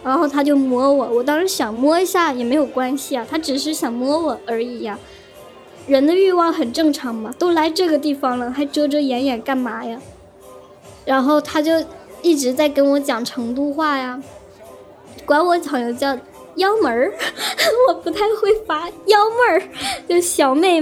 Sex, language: male, Chinese